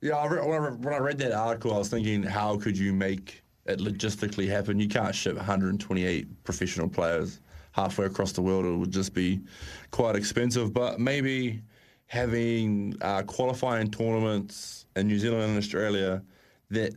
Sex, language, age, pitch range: male, English, 20-39, 100-115 Hz